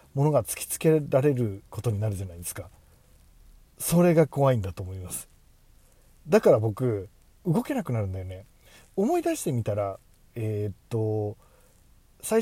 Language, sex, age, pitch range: Japanese, male, 40-59, 105-165 Hz